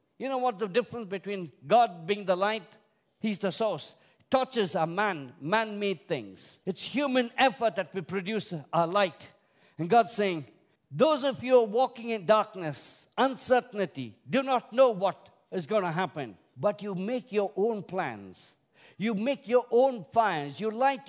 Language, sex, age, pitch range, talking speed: English, male, 50-69, 135-205 Hz, 170 wpm